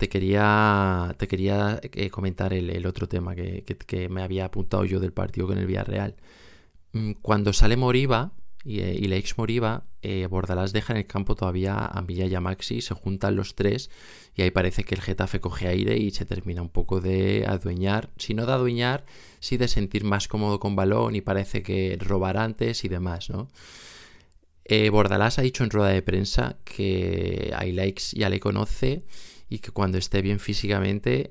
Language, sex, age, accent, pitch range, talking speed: Spanish, male, 20-39, Spanish, 95-105 Hz, 190 wpm